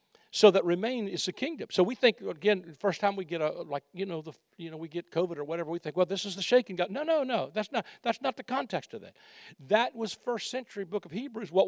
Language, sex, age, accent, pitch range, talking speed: English, male, 60-79, American, 175-230 Hz, 275 wpm